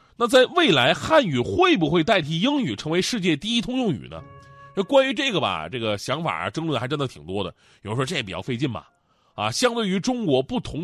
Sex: male